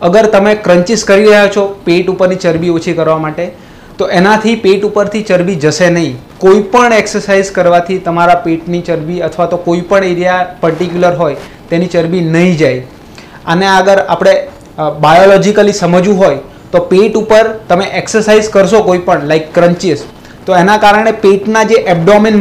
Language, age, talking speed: Gujarati, 30-49, 135 wpm